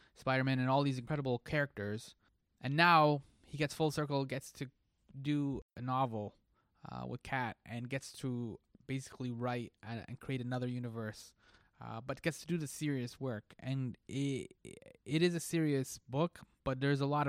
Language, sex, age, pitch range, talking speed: English, male, 20-39, 125-145 Hz, 170 wpm